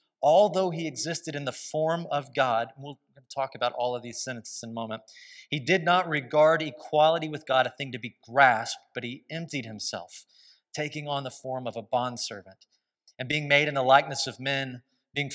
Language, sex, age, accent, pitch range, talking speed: English, male, 30-49, American, 115-145 Hz, 200 wpm